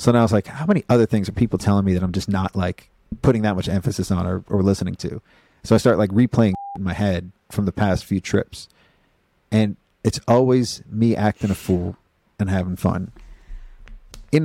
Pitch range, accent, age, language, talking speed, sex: 95-110 Hz, American, 40-59, English, 210 wpm, male